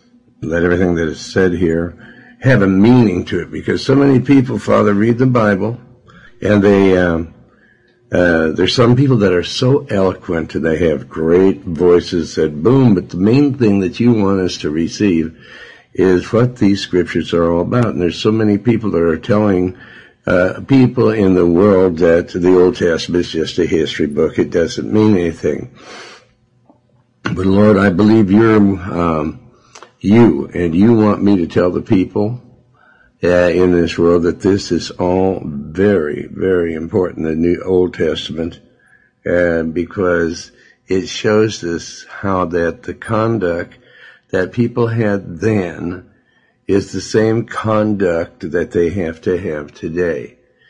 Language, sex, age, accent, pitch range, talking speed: English, male, 60-79, American, 85-110 Hz, 160 wpm